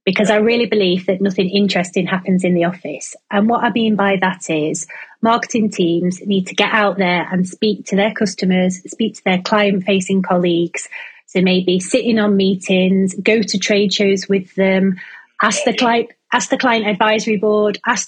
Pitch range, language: 185-225 Hz, English